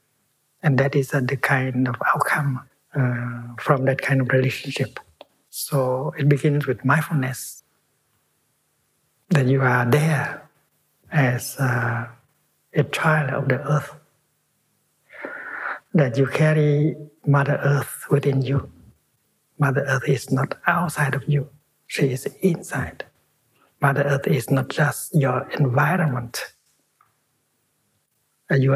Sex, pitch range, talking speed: male, 130-145 Hz, 115 wpm